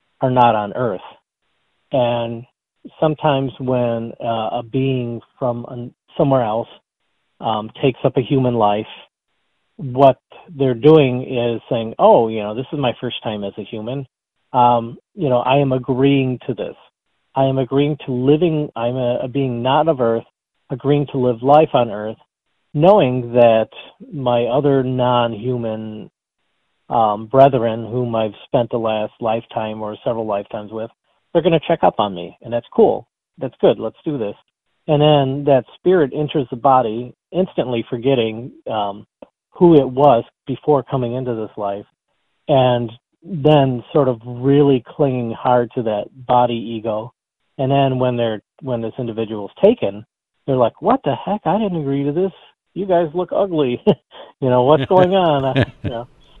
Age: 40-59